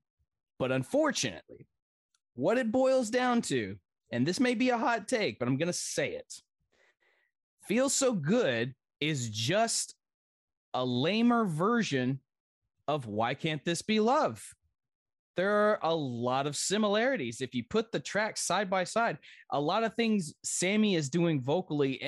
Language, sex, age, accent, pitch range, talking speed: English, male, 20-39, American, 125-210 Hz, 150 wpm